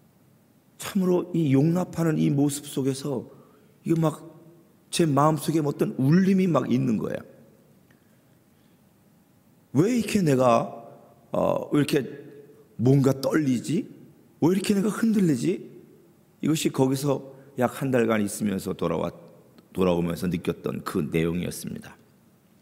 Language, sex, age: Korean, male, 40-59